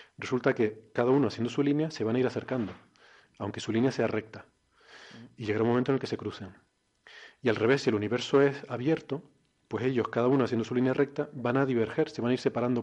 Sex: male